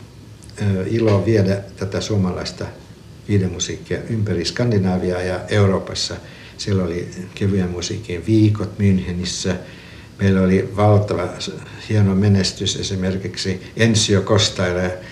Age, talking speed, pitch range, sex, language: 60-79, 85 wpm, 95-110 Hz, male, Finnish